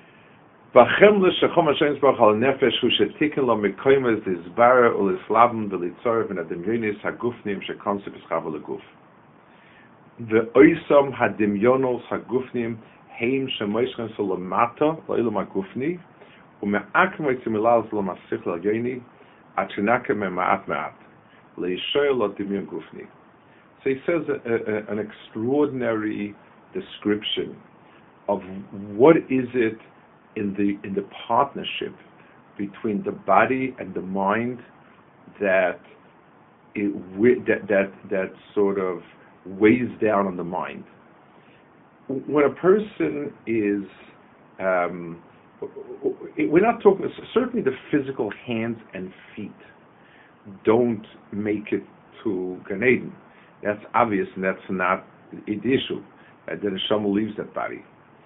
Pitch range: 100-130 Hz